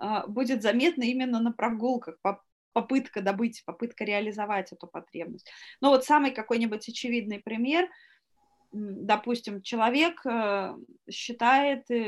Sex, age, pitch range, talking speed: female, 20-39, 205-270 Hz, 100 wpm